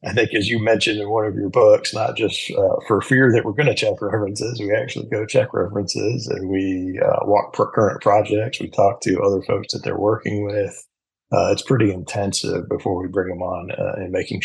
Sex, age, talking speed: male, 50-69, 225 wpm